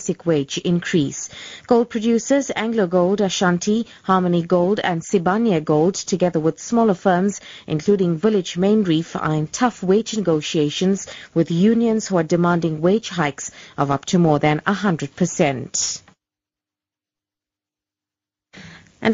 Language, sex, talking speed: English, female, 120 wpm